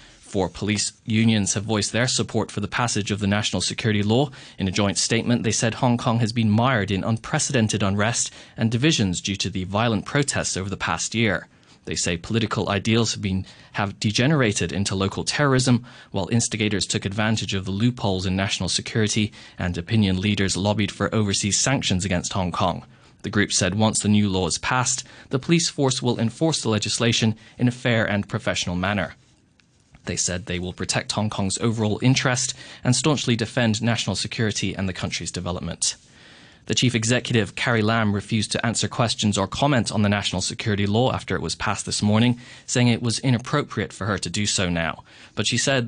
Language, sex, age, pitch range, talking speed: English, male, 20-39, 100-120 Hz, 190 wpm